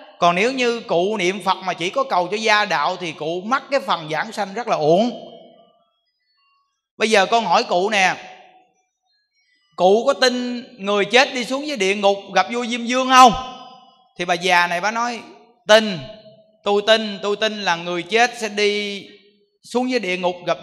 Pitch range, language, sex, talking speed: 200-255 Hz, Vietnamese, male, 190 wpm